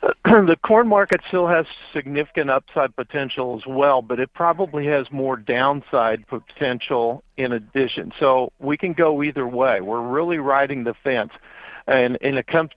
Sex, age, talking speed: male, 50-69, 160 wpm